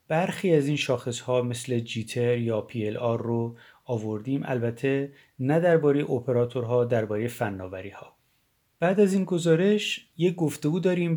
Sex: male